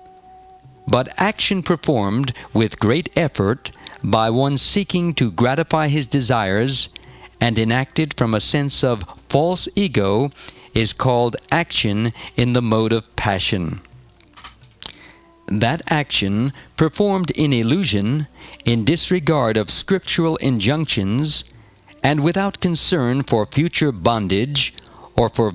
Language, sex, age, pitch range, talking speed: English, male, 50-69, 110-155 Hz, 110 wpm